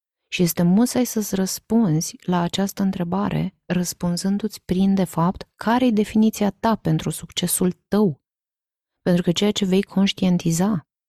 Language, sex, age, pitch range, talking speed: Romanian, female, 20-39, 160-195 Hz, 135 wpm